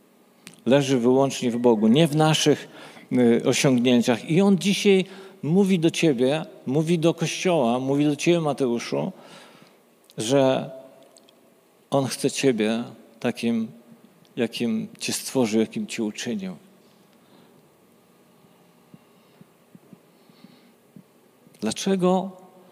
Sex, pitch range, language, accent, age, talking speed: male, 120-165 Hz, Polish, native, 50-69, 85 wpm